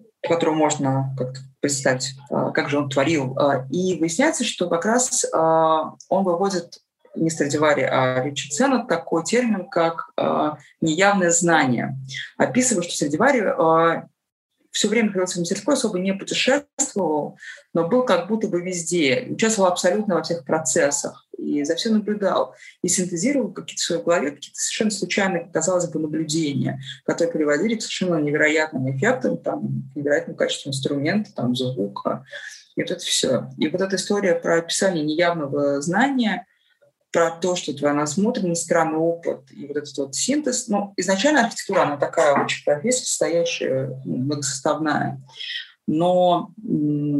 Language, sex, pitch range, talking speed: Russian, female, 145-195 Hz, 140 wpm